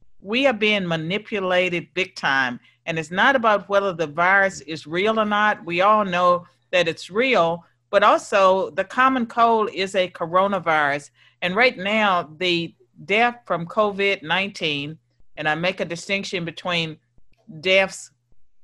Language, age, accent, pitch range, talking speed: English, 50-69, American, 165-210 Hz, 145 wpm